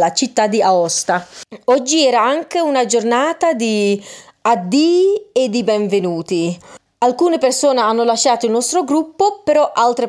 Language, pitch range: Italian, 205-290 Hz